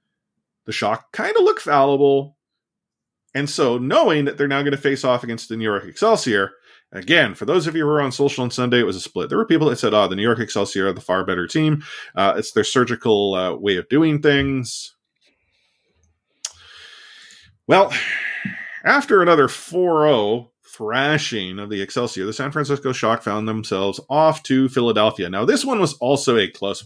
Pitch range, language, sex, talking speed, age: 110-145 Hz, English, male, 190 wpm, 30-49